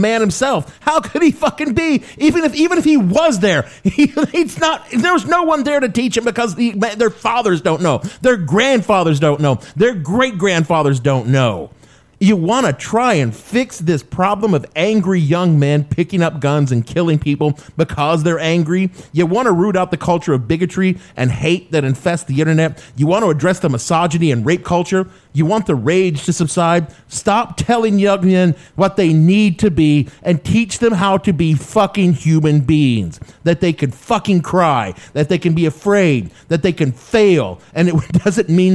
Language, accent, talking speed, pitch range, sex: English, American, 200 wpm, 155-215 Hz, male